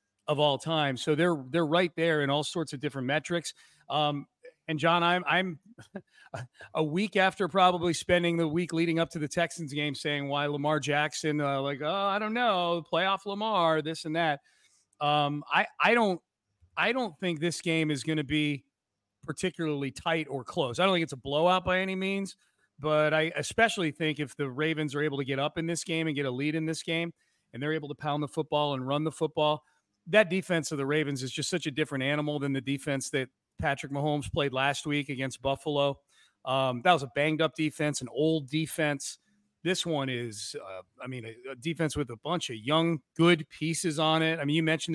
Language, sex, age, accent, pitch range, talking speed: English, male, 30-49, American, 140-165 Hz, 210 wpm